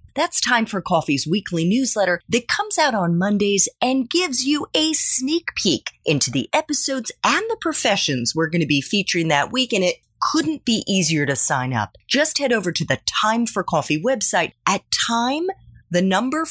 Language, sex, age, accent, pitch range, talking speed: English, female, 30-49, American, 155-255 Hz, 185 wpm